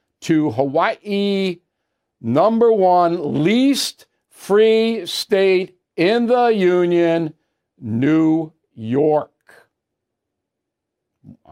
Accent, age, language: American, 60-79, English